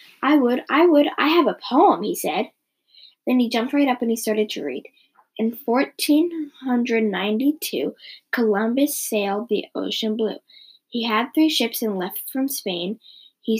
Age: 10-29